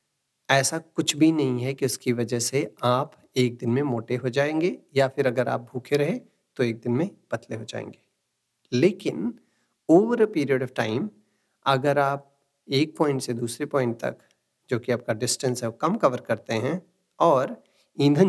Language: Hindi